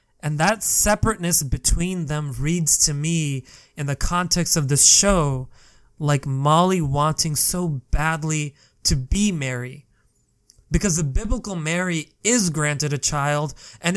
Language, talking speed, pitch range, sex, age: English, 135 wpm, 140-170 Hz, male, 20-39